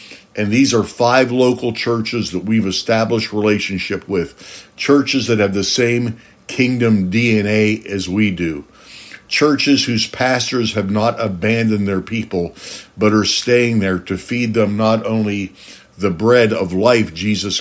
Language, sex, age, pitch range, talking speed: English, male, 60-79, 100-120 Hz, 145 wpm